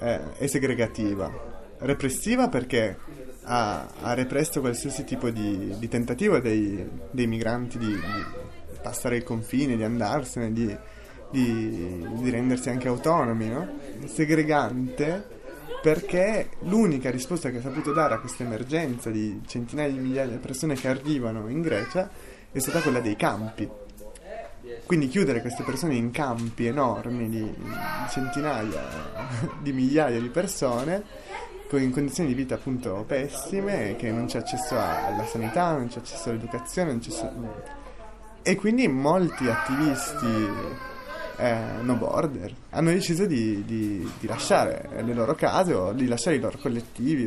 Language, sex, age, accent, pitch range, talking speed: Italian, male, 30-49, native, 115-145 Hz, 135 wpm